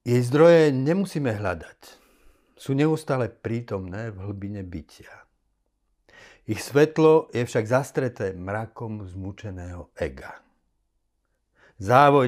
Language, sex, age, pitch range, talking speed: Slovak, male, 50-69, 95-120 Hz, 95 wpm